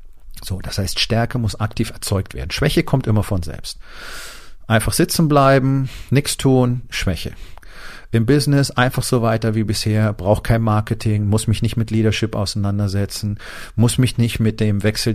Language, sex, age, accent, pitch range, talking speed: German, male, 40-59, German, 100-120 Hz, 160 wpm